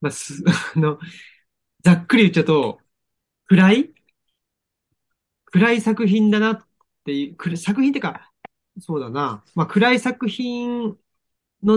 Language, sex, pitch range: Japanese, male, 135-215 Hz